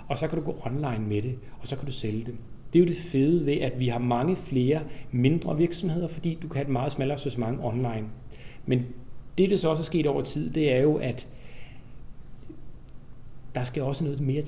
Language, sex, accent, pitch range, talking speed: Danish, male, native, 125-155 Hz, 225 wpm